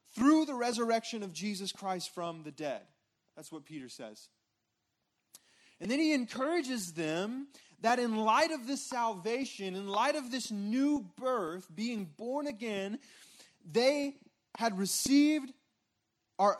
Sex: male